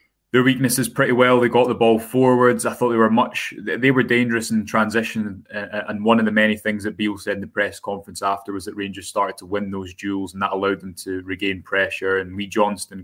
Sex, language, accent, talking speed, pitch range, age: male, English, British, 235 wpm, 100-110 Hz, 20-39